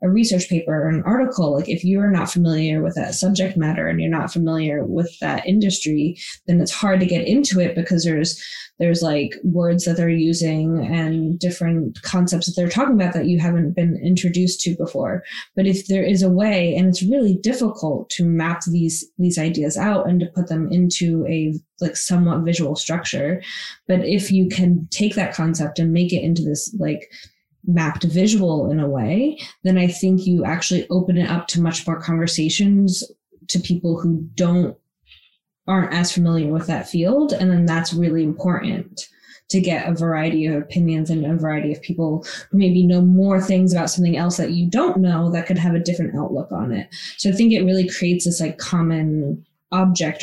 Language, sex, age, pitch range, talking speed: English, female, 20-39, 165-185 Hz, 195 wpm